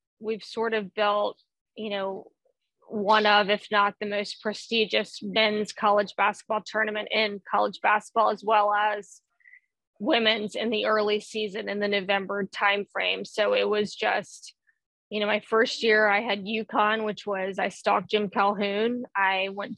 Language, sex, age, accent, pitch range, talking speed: English, female, 20-39, American, 195-215 Hz, 160 wpm